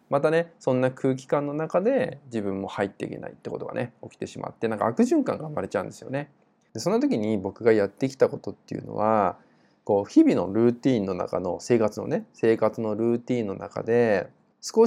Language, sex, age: Japanese, male, 20-39